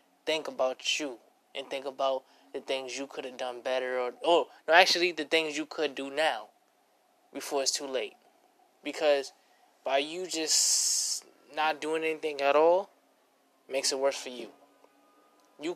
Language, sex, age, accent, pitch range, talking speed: English, male, 20-39, American, 130-155 Hz, 160 wpm